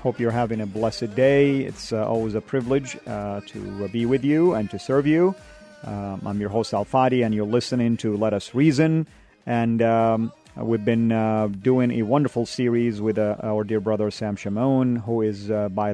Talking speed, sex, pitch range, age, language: 200 wpm, male, 105-125 Hz, 40-59, English